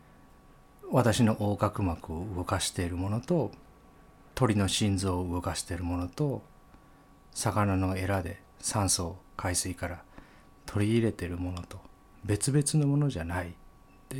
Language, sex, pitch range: Japanese, male, 90-125 Hz